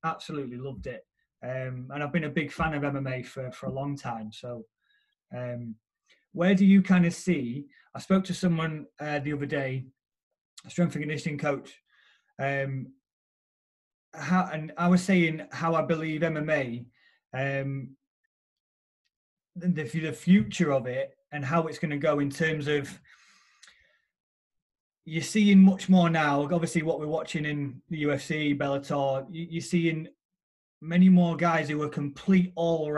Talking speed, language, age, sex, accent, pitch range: 155 wpm, English, 30-49, male, British, 140-170 Hz